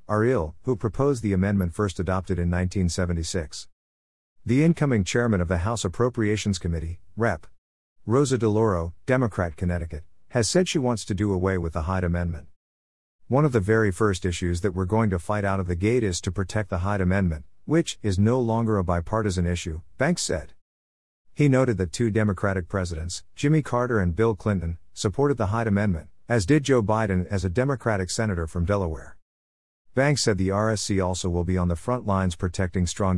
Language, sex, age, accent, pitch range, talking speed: English, male, 50-69, American, 85-110 Hz, 185 wpm